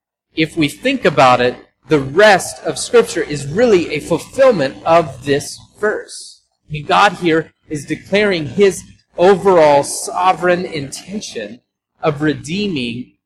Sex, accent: male, American